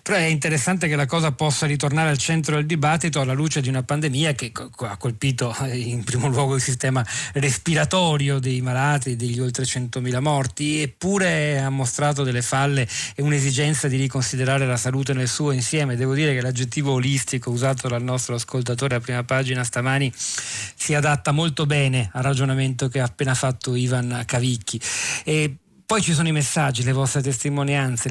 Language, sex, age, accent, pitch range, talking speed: Italian, male, 40-59, native, 125-150 Hz, 175 wpm